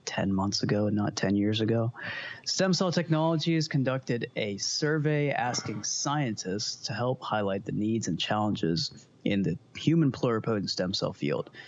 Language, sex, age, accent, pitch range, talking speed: English, male, 20-39, American, 110-150 Hz, 150 wpm